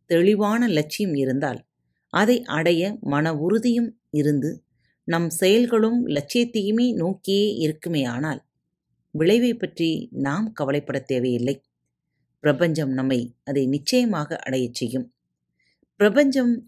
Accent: native